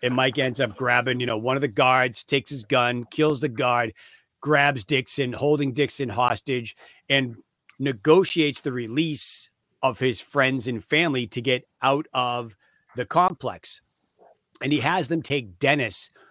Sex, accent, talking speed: male, American, 160 wpm